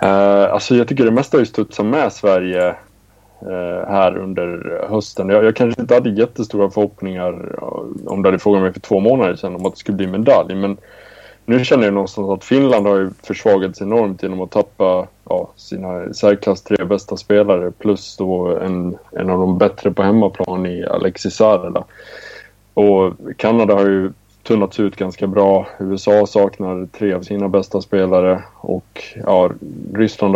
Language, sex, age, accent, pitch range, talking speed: Swedish, male, 20-39, Norwegian, 95-105 Hz, 175 wpm